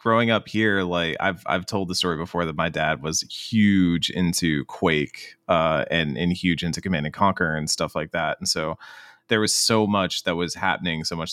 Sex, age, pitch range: male, 20-39, 80-95 Hz